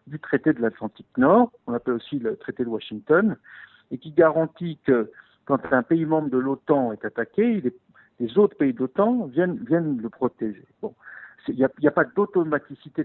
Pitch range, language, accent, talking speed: 130-190 Hz, French, French, 180 wpm